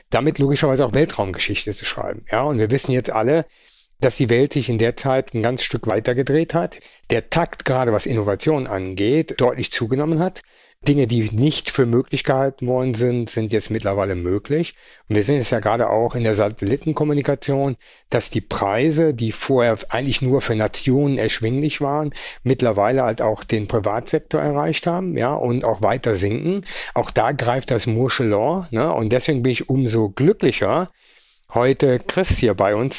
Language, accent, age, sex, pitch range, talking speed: German, German, 50-69, male, 115-150 Hz, 175 wpm